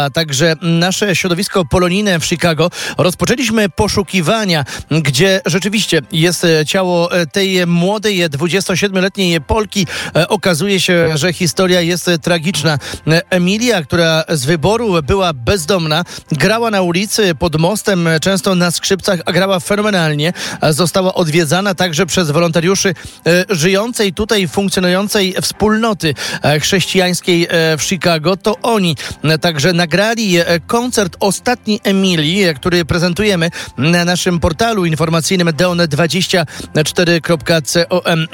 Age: 30-49